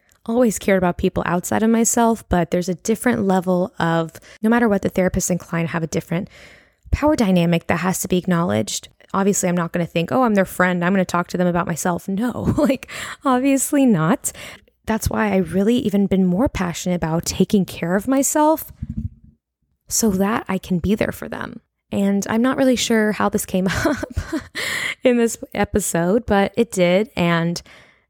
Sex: female